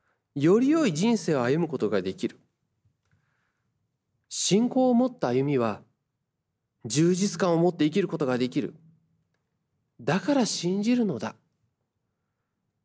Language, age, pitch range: Japanese, 30-49, 120-170 Hz